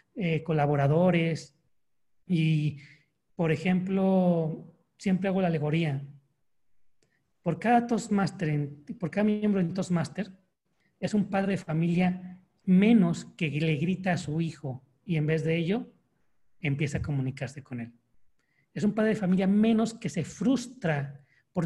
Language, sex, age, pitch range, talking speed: Spanish, male, 40-59, 140-185 Hz, 140 wpm